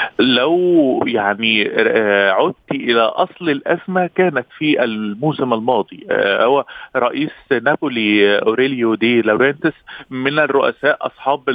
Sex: male